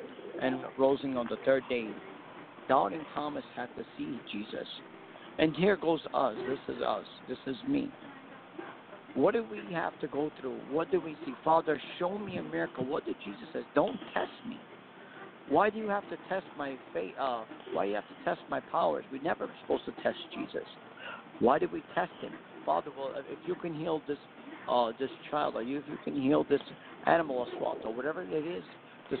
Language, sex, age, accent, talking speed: English, male, 50-69, American, 195 wpm